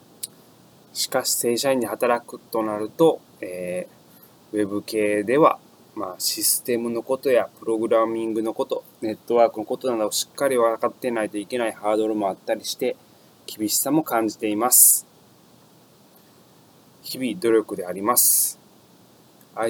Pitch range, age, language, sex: 105-125 Hz, 20-39, Japanese, male